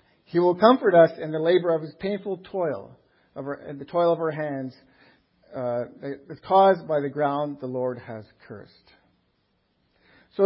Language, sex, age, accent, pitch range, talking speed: English, male, 50-69, American, 140-195 Hz, 150 wpm